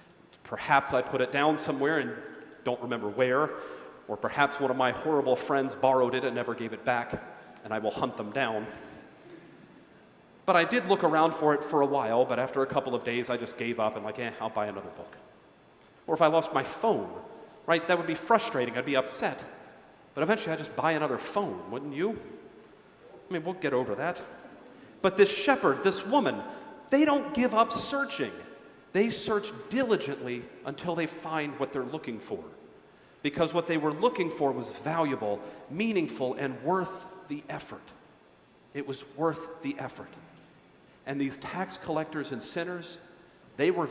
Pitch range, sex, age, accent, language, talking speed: 125-170 Hz, male, 40-59, American, English, 180 wpm